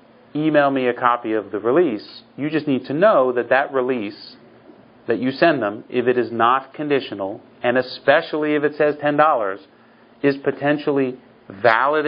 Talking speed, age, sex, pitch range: 165 wpm, 40-59, male, 115-145 Hz